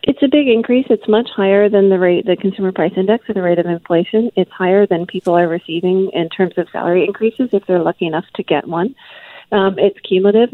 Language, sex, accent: English, female, American